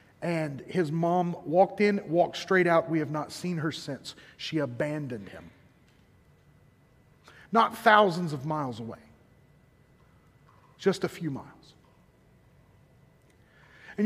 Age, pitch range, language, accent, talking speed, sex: 40-59, 160-230 Hz, English, American, 115 wpm, male